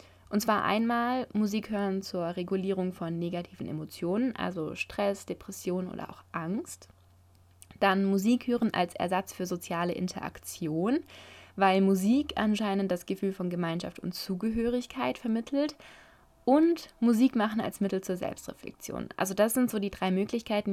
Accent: German